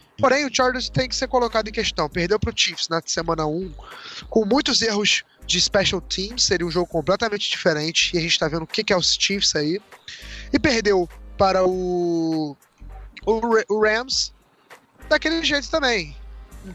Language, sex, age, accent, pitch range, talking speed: Portuguese, male, 20-39, Brazilian, 185-235 Hz, 175 wpm